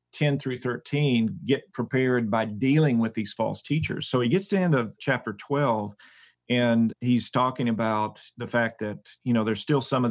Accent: American